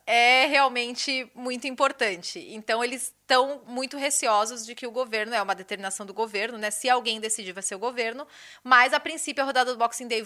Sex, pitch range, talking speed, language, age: female, 220-265 Hz, 200 wpm, Portuguese, 20-39